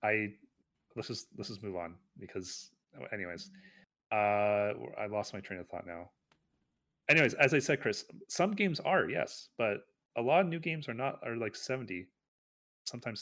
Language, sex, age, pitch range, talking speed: English, male, 30-49, 100-125 Hz, 175 wpm